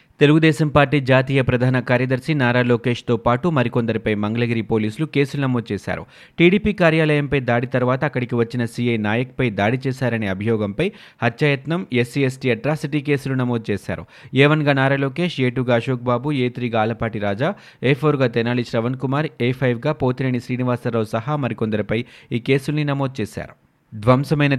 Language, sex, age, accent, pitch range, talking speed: Telugu, male, 30-49, native, 115-140 Hz, 145 wpm